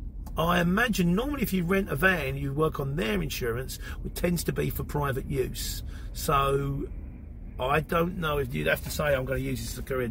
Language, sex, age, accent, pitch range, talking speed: English, male, 40-59, British, 125-190 Hz, 220 wpm